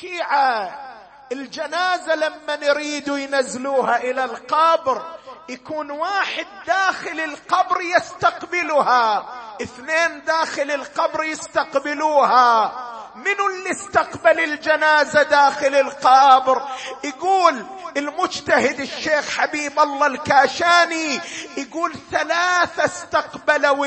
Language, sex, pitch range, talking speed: Arabic, male, 290-345 Hz, 75 wpm